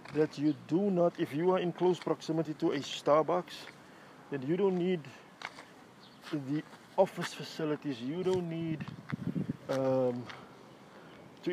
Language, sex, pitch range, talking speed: English, male, 150-175 Hz, 130 wpm